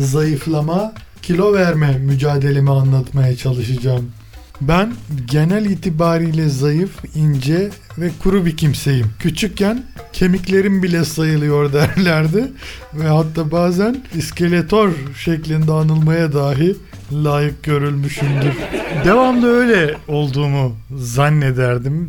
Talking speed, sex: 90 wpm, male